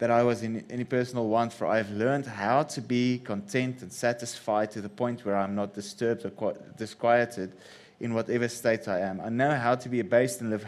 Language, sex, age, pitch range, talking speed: English, male, 20-39, 105-130 Hz, 215 wpm